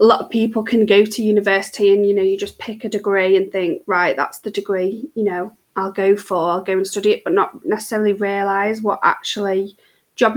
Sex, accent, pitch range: female, British, 195-220 Hz